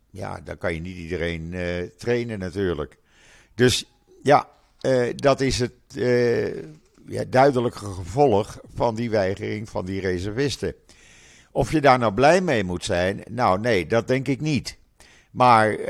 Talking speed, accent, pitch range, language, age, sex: 145 wpm, Dutch, 95-125 Hz, Dutch, 50-69, male